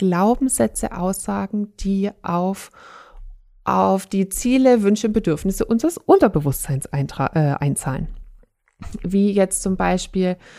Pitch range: 180-230 Hz